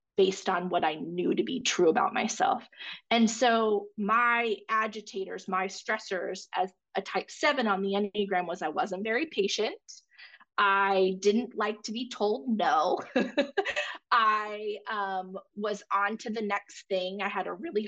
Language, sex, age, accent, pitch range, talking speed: English, female, 20-39, American, 190-225 Hz, 160 wpm